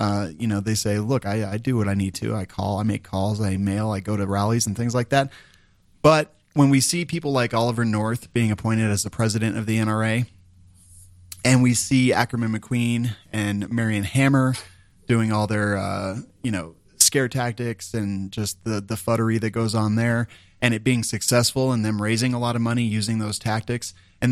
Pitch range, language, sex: 105-120 Hz, English, male